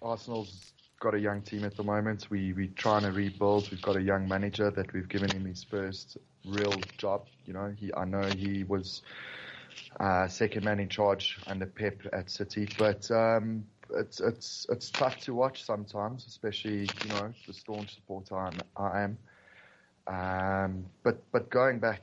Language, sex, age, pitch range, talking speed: English, male, 20-39, 95-105 Hz, 175 wpm